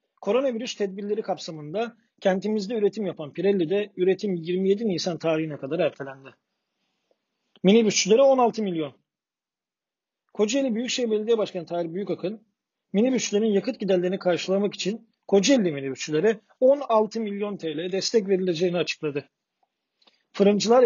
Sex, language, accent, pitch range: male, Turkish, native, 175-225 Hz